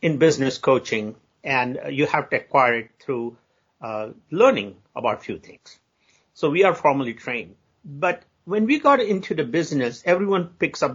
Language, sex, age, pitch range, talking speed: English, male, 50-69, 120-165 Hz, 170 wpm